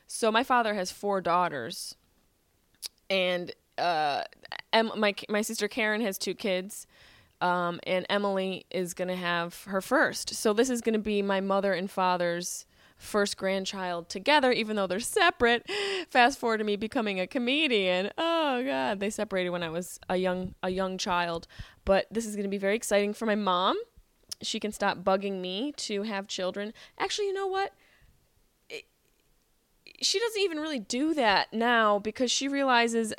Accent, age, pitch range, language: American, 20-39, 185-250 Hz, English